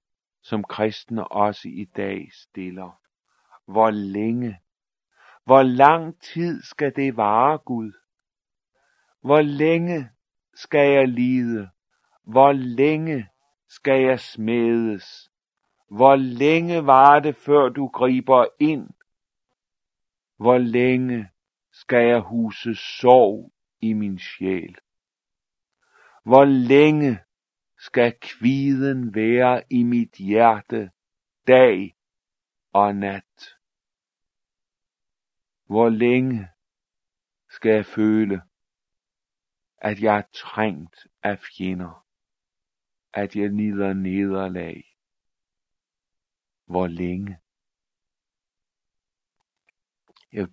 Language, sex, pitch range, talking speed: Danish, male, 100-130 Hz, 85 wpm